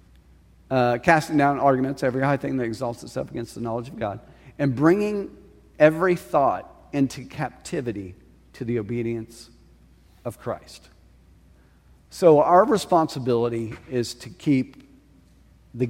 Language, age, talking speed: English, 40-59, 125 wpm